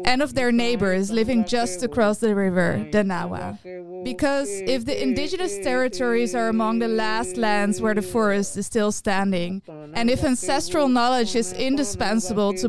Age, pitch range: 20-39, 205-250 Hz